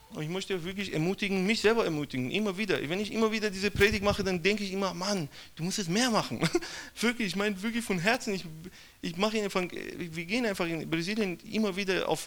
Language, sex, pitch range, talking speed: German, male, 180-225 Hz, 220 wpm